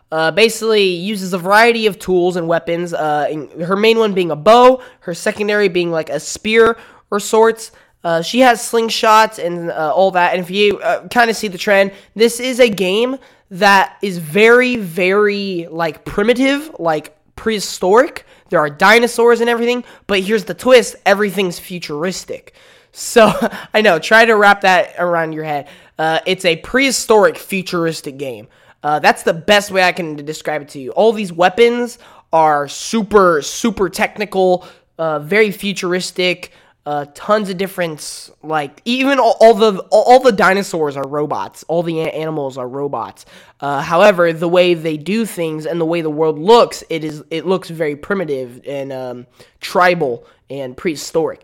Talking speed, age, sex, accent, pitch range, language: 170 wpm, 20-39, male, American, 165-220 Hz, English